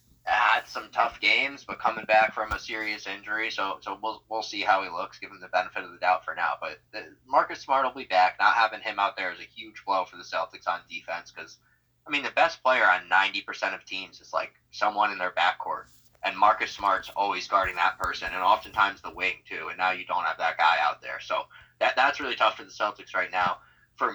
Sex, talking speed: male, 240 wpm